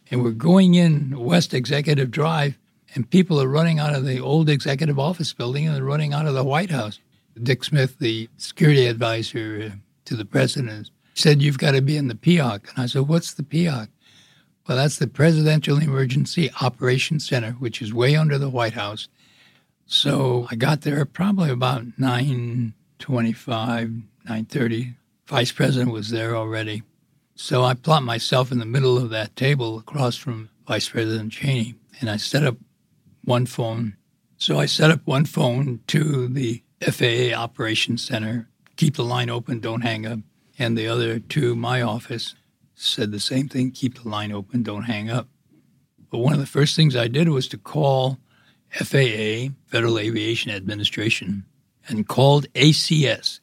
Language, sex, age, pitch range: English, male, 60-79, 115-145 Hz